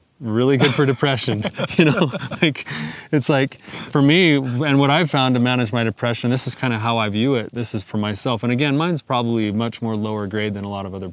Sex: male